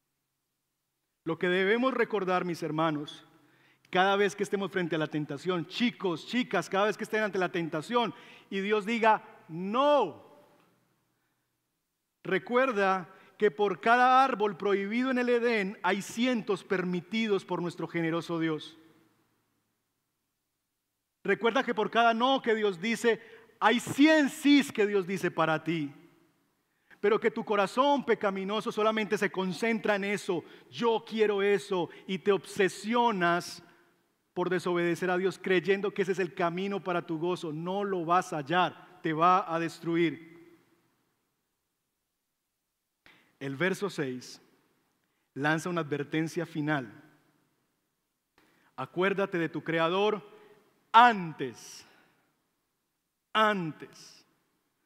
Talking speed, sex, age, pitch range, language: 120 wpm, male, 40-59, 165-215 Hz, Spanish